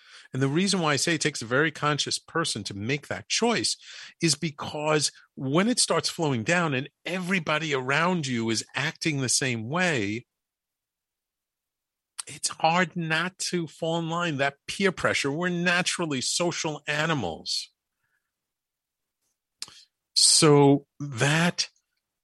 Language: English